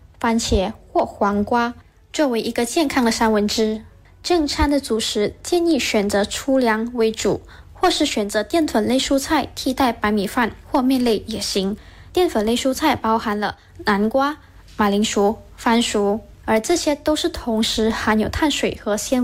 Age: 10-29